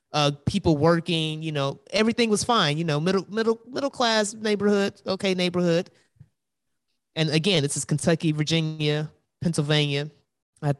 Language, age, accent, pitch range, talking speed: English, 20-39, American, 145-190 Hz, 140 wpm